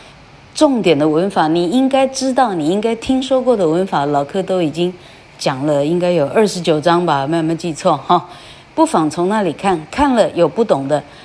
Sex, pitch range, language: female, 165-220 Hz, Chinese